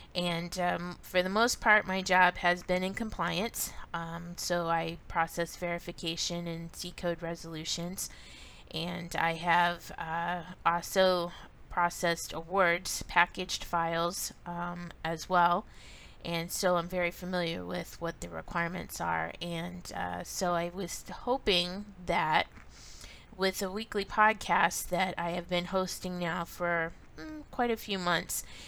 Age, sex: 20-39, female